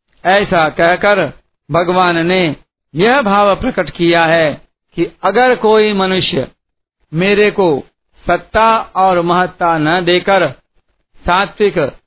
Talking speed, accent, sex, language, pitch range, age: 105 wpm, native, male, Hindi, 165-205 Hz, 50-69